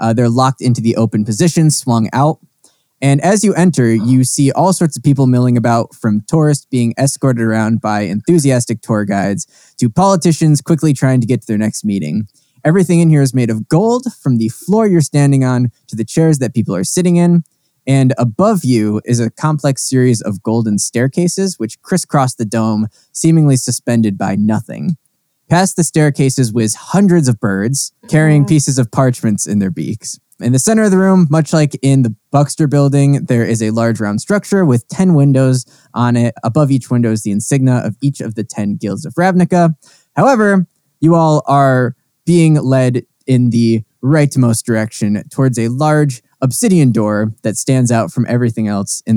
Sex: male